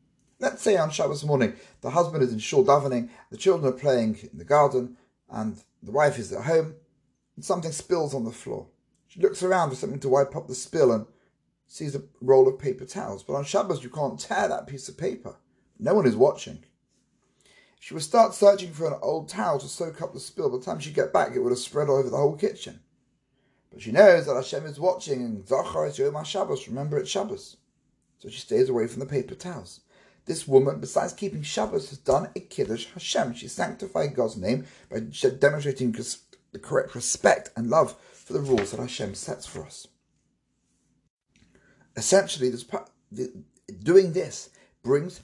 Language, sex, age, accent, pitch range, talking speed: English, male, 30-49, British, 120-180 Hz, 195 wpm